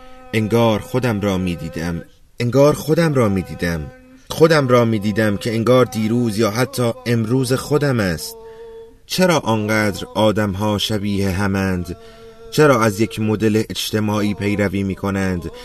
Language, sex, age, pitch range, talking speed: Persian, male, 30-49, 100-125 Hz, 135 wpm